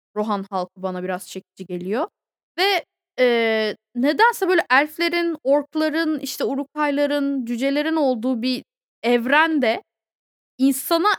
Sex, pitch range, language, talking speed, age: female, 215-305 Hz, Turkish, 100 wpm, 20-39